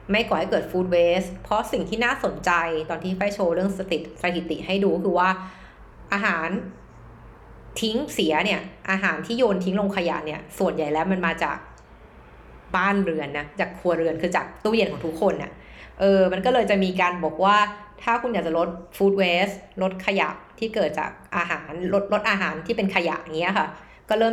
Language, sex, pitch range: Thai, female, 160-200 Hz